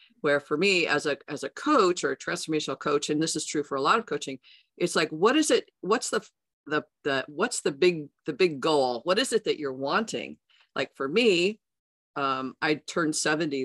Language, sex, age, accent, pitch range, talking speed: English, female, 50-69, American, 140-180 Hz, 215 wpm